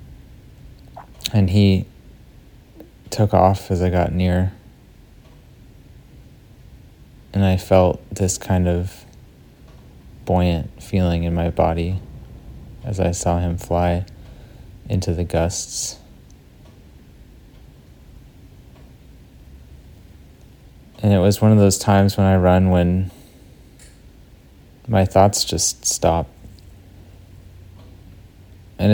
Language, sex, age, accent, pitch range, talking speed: English, male, 30-49, American, 85-100 Hz, 90 wpm